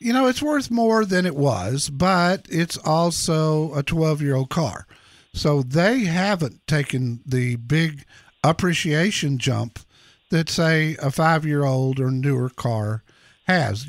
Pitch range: 130-180 Hz